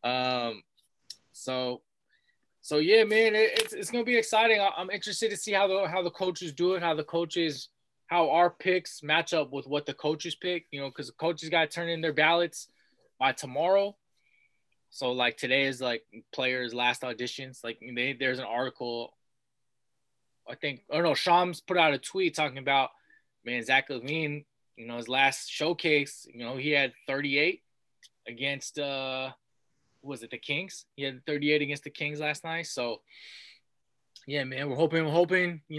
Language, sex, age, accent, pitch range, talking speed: English, male, 20-39, American, 135-165 Hz, 185 wpm